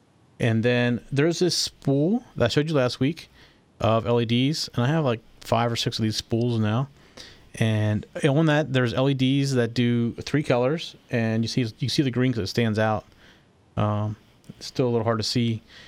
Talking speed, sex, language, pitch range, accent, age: 195 wpm, male, English, 110-130 Hz, American, 30-49